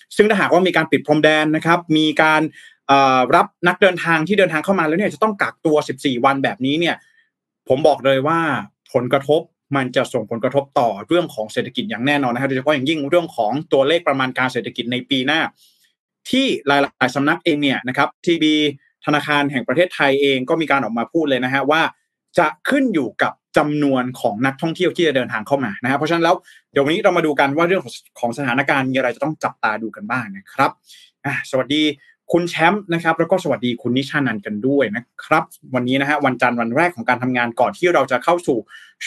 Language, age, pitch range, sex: Thai, 20-39, 130-170 Hz, male